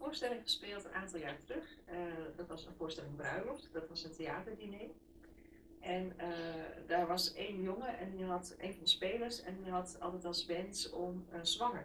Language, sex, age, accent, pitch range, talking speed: Dutch, female, 30-49, Dutch, 165-195 Hz, 190 wpm